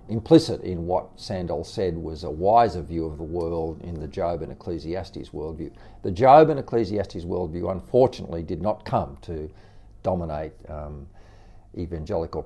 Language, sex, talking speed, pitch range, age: English, male, 150 wpm, 85-105 Hz, 50-69